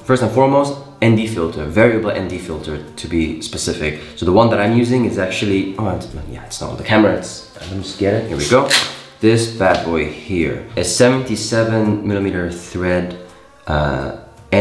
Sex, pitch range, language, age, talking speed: male, 90-110 Hz, English, 20-39, 180 wpm